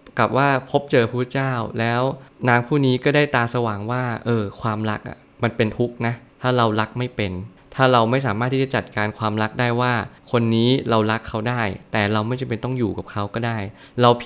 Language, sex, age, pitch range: Thai, male, 20-39, 105-130 Hz